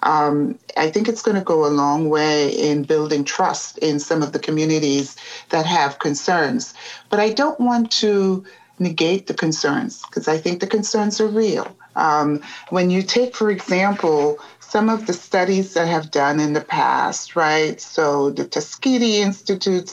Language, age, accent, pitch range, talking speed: English, 40-59, American, 150-210 Hz, 170 wpm